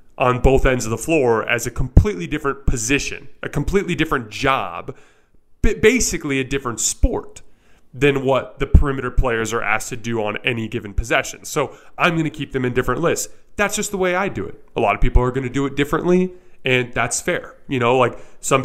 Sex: male